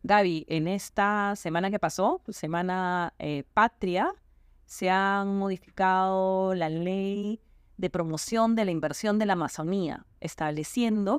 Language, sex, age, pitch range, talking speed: Spanish, female, 30-49, 170-215 Hz, 125 wpm